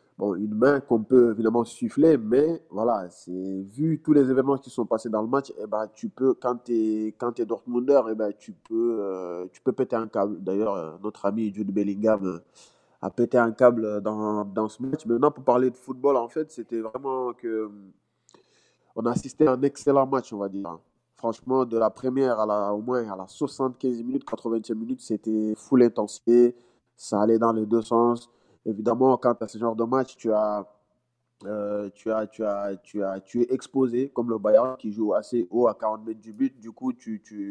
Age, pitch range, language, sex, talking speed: 20-39, 105-125 Hz, French, male, 190 wpm